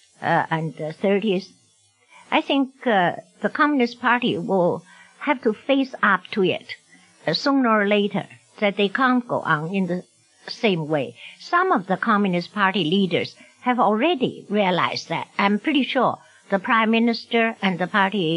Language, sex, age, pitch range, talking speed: English, female, 60-79, 180-235 Hz, 155 wpm